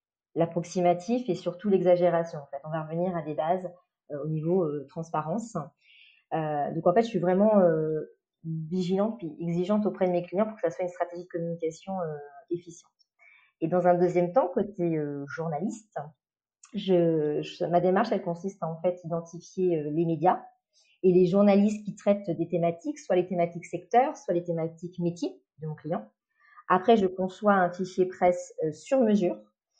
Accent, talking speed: French, 180 wpm